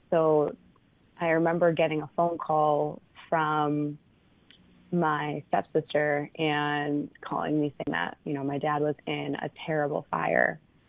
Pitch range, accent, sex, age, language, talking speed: 145-165 Hz, American, female, 20-39, English, 130 wpm